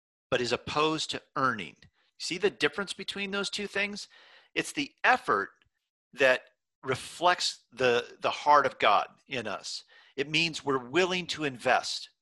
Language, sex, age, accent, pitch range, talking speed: English, male, 50-69, American, 135-200 Hz, 145 wpm